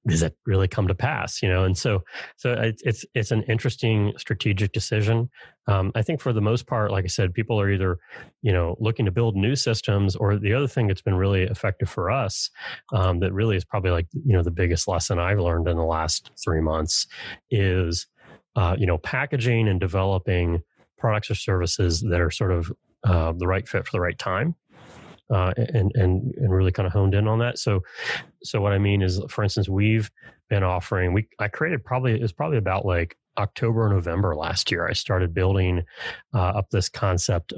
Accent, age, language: American, 30-49, English